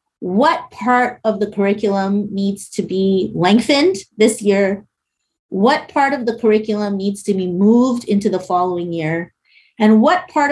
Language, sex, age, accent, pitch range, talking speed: English, female, 30-49, American, 190-240 Hz, 155 wpm